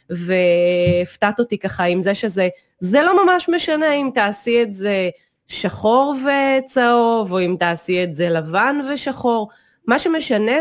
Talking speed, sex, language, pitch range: 140 wpm, female, Hebrew, 195-255 Hz